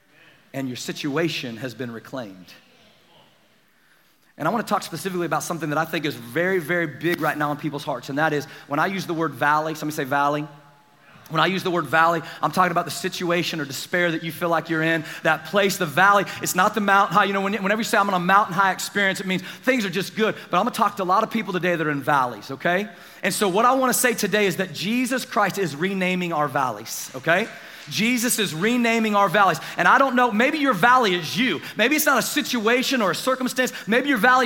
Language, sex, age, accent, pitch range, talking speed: English, male, 30-49, American, 165-235 Hz, 240 wpm